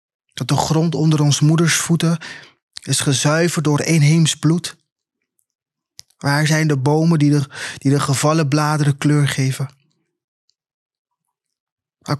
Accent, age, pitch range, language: Dutch, 20-39, 140-155 Hz, Dutch